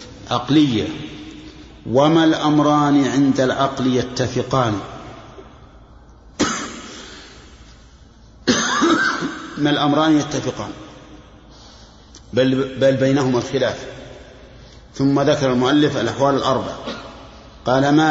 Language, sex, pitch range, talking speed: Arabic, male, 125-145 Hz, 65 wpm